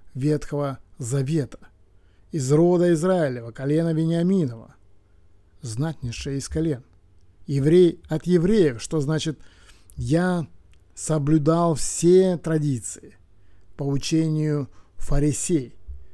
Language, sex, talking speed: Russian, male, 80 wpm